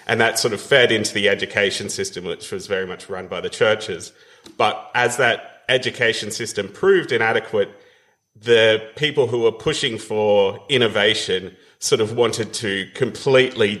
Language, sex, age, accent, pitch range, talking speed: English, male, 30-49, Australian, 105-160 Hz, 155 wpm